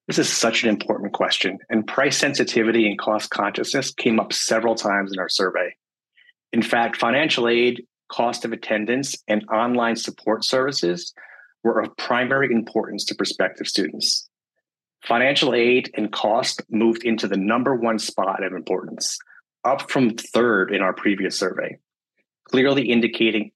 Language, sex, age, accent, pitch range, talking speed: English, male, 30-49, American, 105-120 Hz, 150 wpm